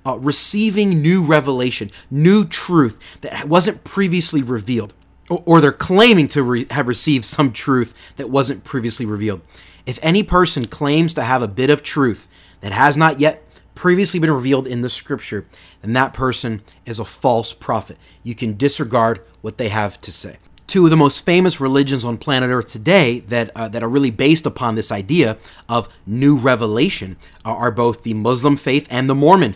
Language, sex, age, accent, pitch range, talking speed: English, male, 30-49, American, 115-145 Hz, 180 wpm